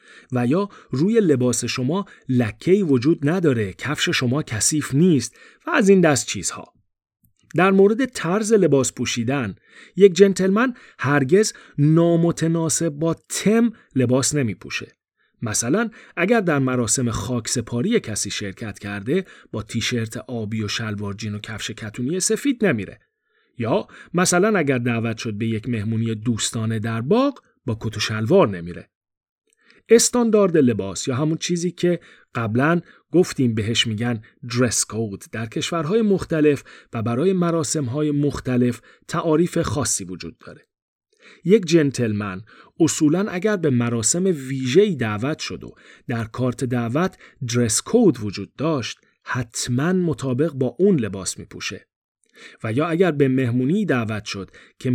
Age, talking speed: 40-59, 130 wpm